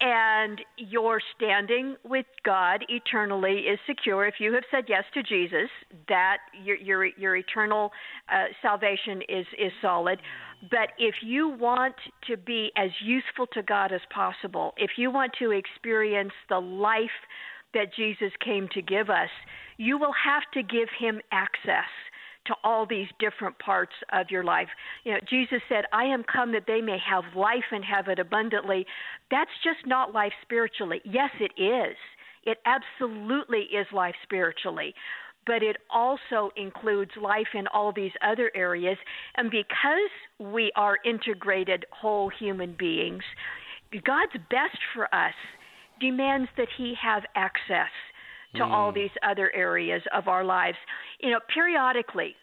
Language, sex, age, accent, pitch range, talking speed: English, female, 50-69, American, 200-250 Hz, 150 wpm